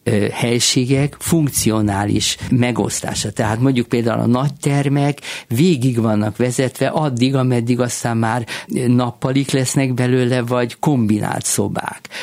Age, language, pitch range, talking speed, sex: 50-69, Hungarian, 110-135 Hz, 110 wpm, male